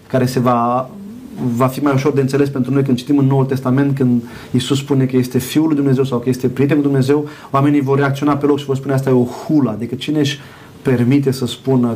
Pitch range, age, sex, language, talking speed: 125-145 Hz, 30-49, male, Romanian, 240 wpm